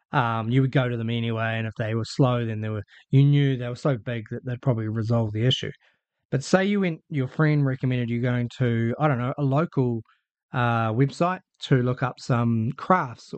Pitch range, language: 120-155 Hz, English